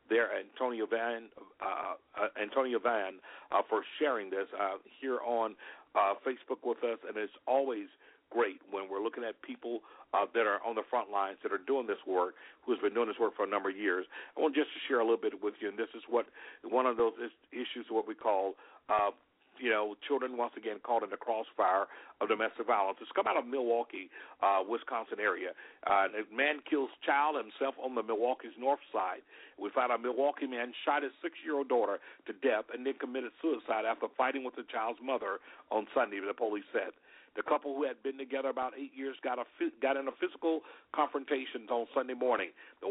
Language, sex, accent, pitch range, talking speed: English, male, American, 120-150 Hz, 210 wpm